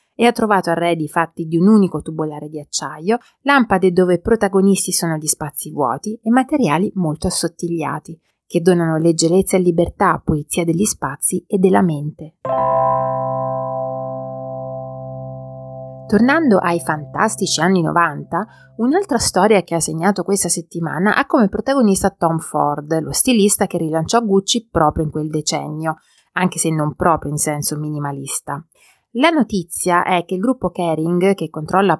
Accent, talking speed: native, 140 wpm